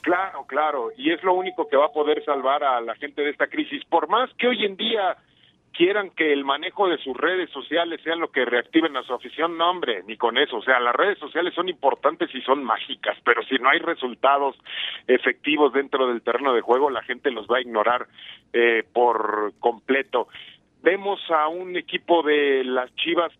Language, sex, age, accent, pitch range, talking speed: Spanish, male, 50-69, Mexican, 135-170 Hz, 205 wpm